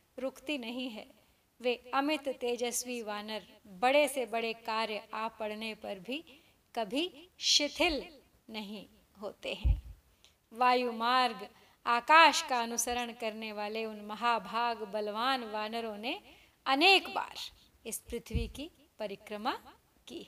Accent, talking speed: native, 115 wpm